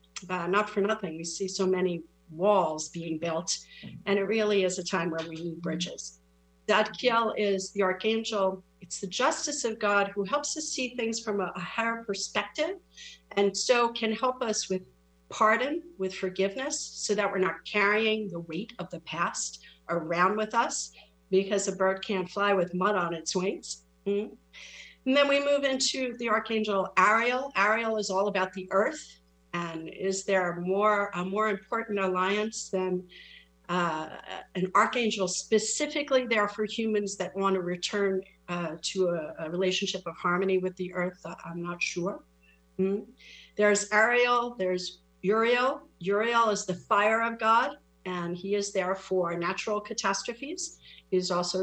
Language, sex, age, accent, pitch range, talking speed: English, female, 50-69, American, 180-220 Hz, 165 wpm